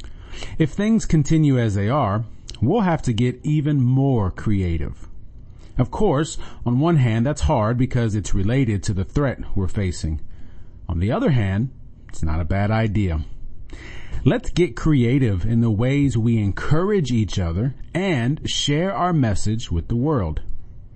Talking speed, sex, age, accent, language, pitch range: 155 wpm, male, 40-59, American, English, 100-135 Hz